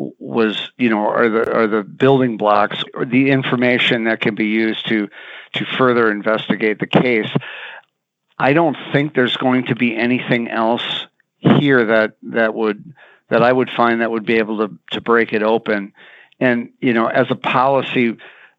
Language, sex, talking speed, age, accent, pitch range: English, male, 175 wpm, 50-69, American, 110-135 Hz